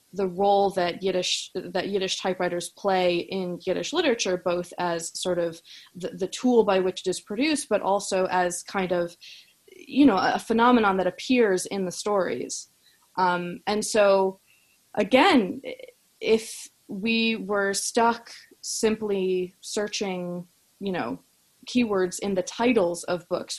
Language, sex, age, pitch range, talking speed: English, female, 20-39, 180-205 Hz, 140 wpm